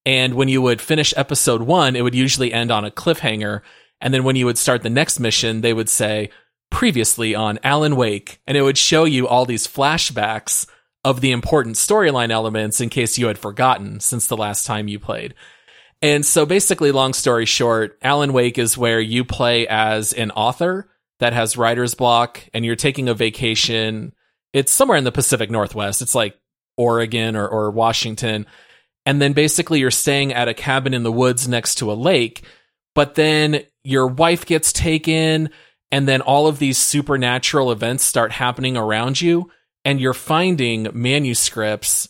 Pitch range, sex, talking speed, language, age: 115-140 Hz, male, 180 wpm, English, 30-49